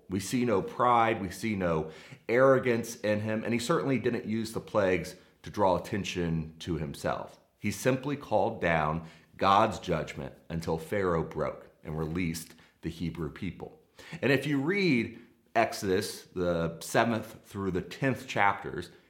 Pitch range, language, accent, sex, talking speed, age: 85-125 Hz, English, American, male, 150 wpm, 30-49